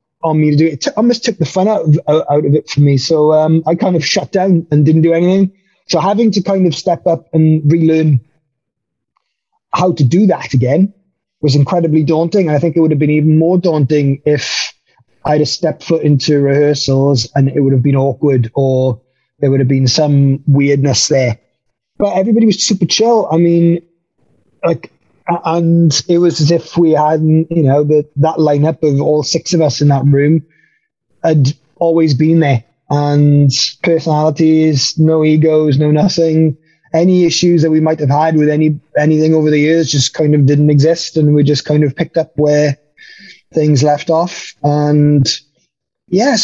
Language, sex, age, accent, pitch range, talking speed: English, male, 30-49, British, 145-170 Hz, 185 wpm